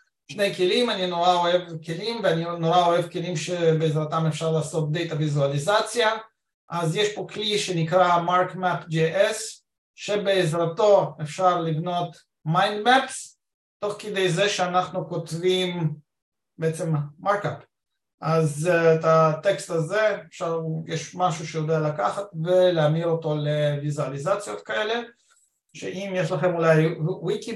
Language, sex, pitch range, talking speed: English, male, 160-195 Hz, 110 wpm